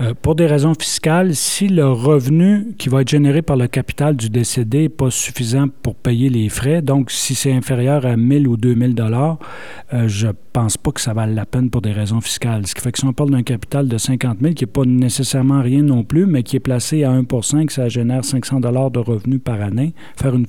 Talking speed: 235 wpm